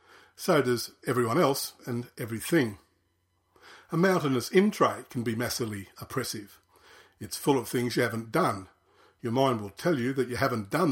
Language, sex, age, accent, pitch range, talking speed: English, male, 50-69, Australian, 120-150 Hz, 160 wpm